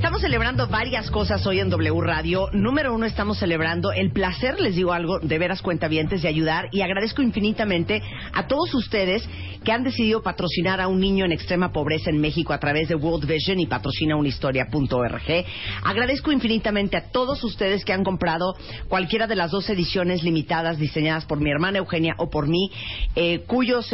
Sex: female